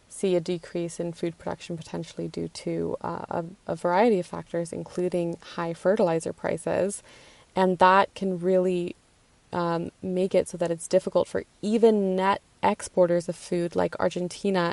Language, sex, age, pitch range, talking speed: English, female, 20-39, 175-190 Hz, 155 wpm